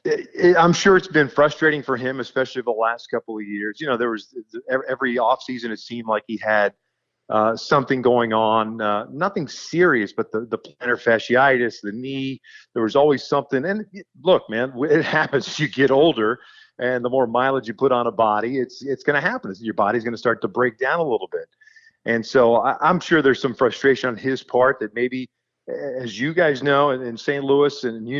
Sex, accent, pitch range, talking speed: male, American, 115-145 Hz, 215 wpm